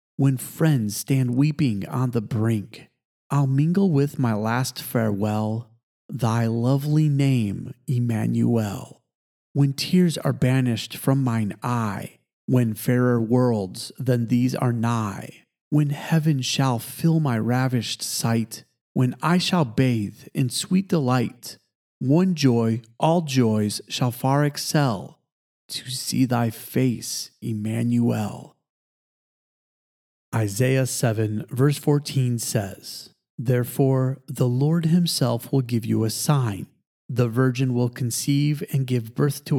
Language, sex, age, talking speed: English, male, 40-59, 120 wpm